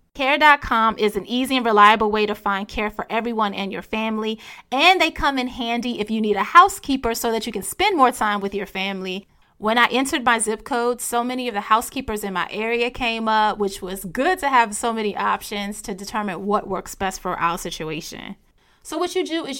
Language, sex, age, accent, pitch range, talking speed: English, female, 30-49, American, 200-255 Hz, 220 wpm